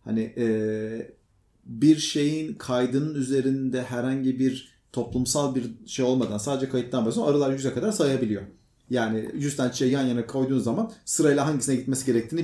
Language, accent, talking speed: Turkish, native, 150 wpm